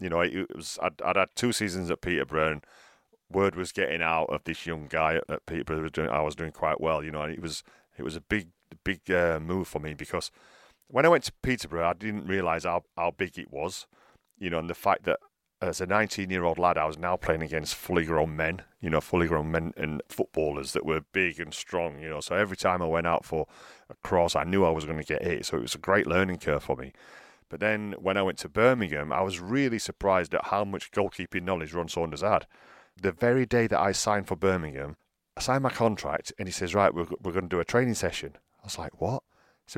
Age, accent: 40-59, British